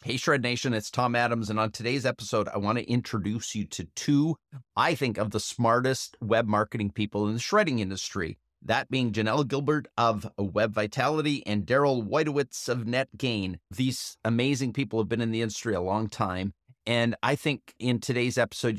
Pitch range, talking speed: 110-135 Hz, 185 wpm